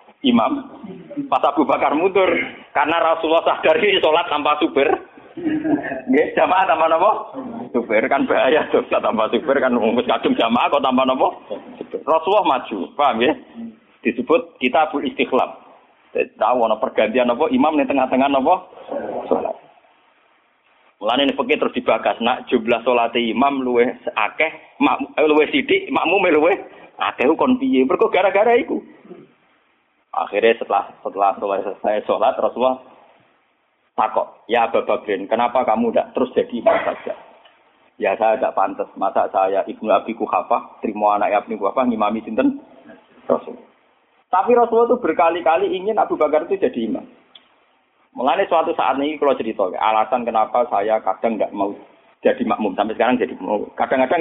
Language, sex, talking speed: Malay, male, 140 wpm